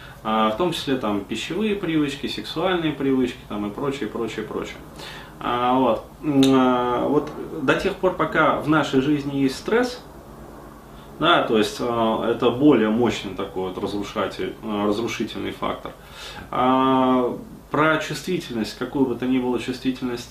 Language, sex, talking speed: Russian, male, 135 wpm